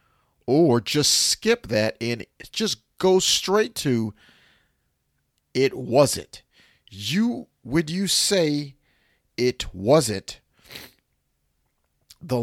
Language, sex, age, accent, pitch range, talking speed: English, male, 40-59, American, 90-145 Hz, 85 wpm